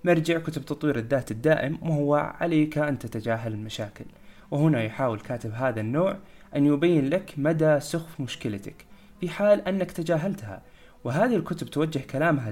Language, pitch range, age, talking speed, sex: Arabic, 120-160 Hz, 20-39, 140 wpm, male